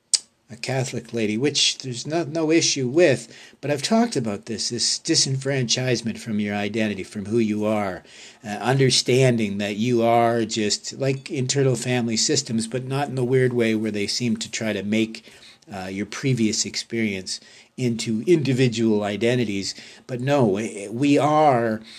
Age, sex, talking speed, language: 50-69, male, 155 wpm, English